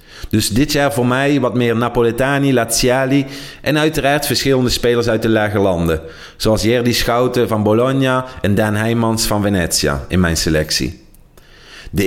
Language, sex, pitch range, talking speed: Dutch, male, 110-145 Hz, 155 wpm